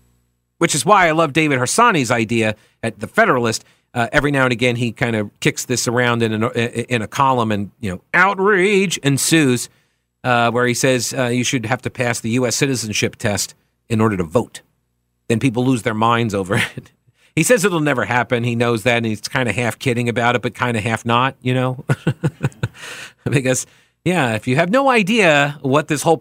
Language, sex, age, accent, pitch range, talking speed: English, male, 40-59, American, 110-160 Hz, 210 wpm